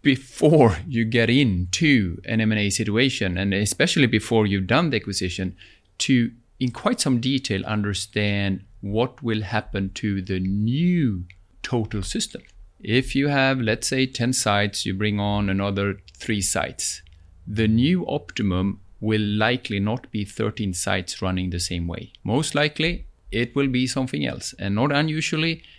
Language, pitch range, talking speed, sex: English, 95-130 Hz, 150 wpm, male